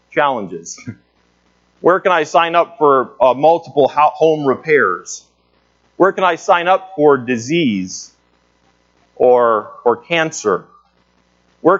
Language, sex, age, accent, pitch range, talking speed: English, male, 40-59, American, 135-175 Hz, 110 wpm